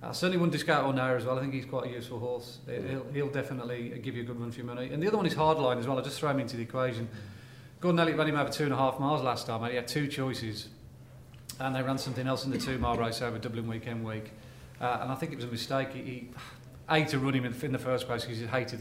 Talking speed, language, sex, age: 290 wpm, English, male, 40-59